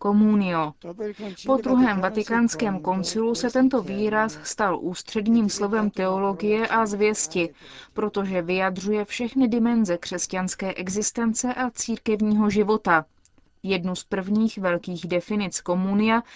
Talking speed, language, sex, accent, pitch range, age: 105 wpm, Czech, female, native, 180-225 Hz, 30-49